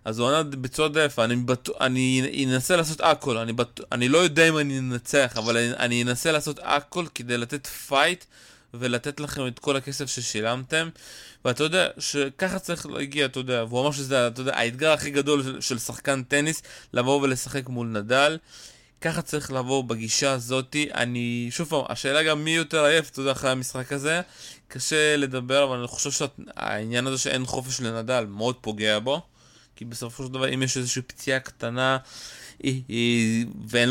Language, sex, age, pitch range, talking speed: Hebrew, male, 20-39, 120-145 Hz, 175 wpm